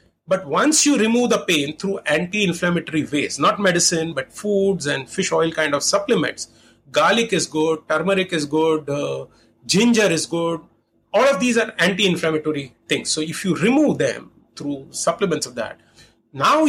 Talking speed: 160 wpm